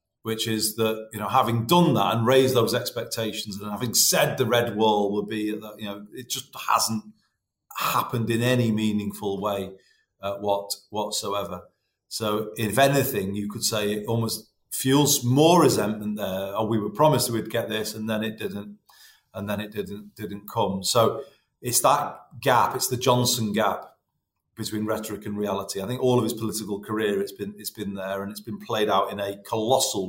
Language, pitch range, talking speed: English, 100-125 Hz, 185 wpm